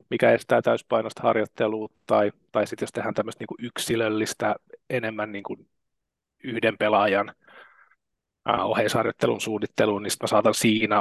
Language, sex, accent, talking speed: Finnish, male, native, 135 wpm